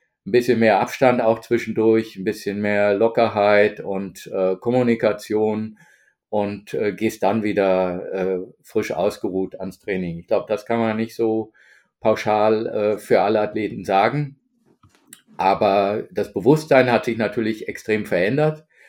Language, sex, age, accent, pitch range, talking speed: German, male, 50-69, German, 105-130 Hz, 140 wpm